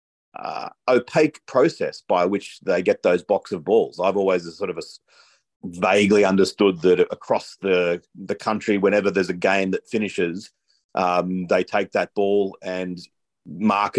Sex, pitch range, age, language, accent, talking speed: male, 95-135 Hz, 40-59, English, Australian, 160 wpm